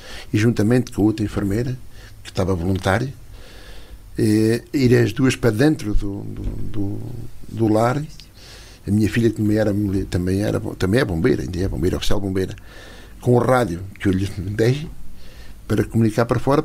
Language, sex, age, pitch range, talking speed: Portuguese, male, 60-79, 100-125 Hz, 165 wpm